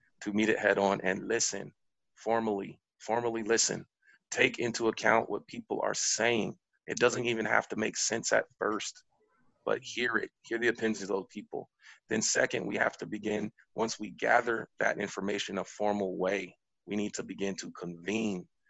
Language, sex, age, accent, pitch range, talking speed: English, male, 30-49, American, 105-120 Hz, 175 wpm